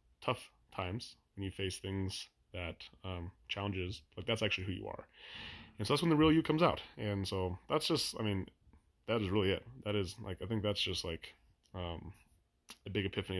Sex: male